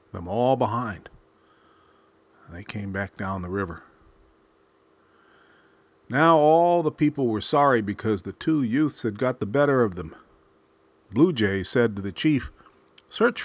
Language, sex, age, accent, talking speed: English, male, 40-59, American, 145 wpm